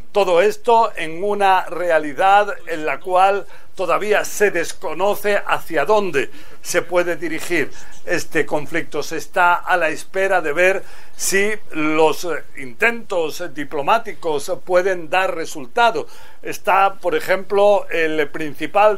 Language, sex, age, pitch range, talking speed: Spanish, male, 60-79, 170-210 Hz, 115 wpm